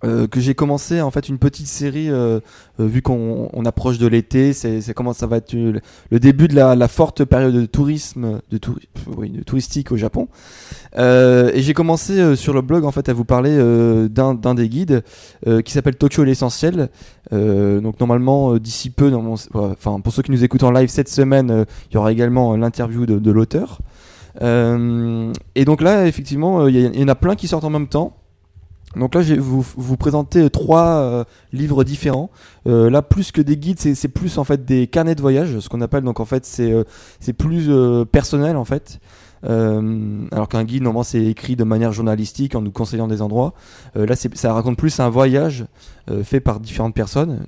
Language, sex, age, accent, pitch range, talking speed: French, male, 20-39, French, 115-140 Hz, 215 wpm